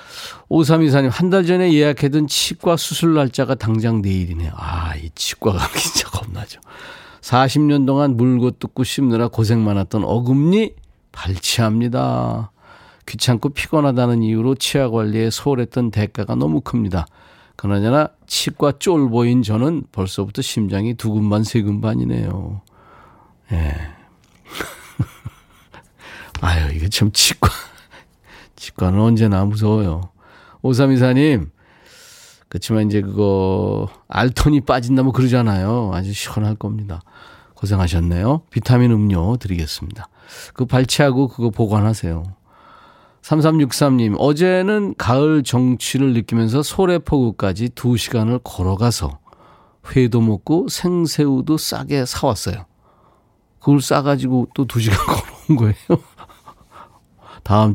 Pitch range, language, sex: 100-140 Hz, Korean, male